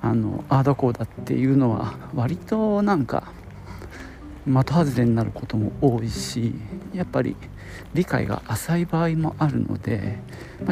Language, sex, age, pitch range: Japanese, male, 50-69, 110-150 Hz